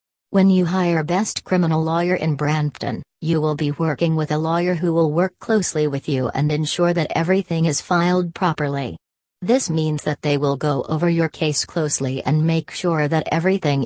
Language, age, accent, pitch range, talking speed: English, 40-59, American, 150-175 Hz, 185 wpm